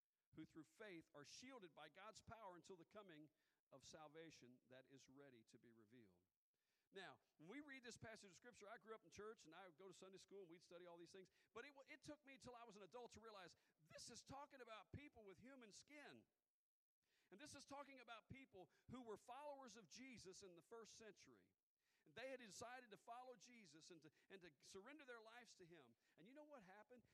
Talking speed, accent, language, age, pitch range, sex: 220 wpm, American, English, 50-69, 165-240 Hz, male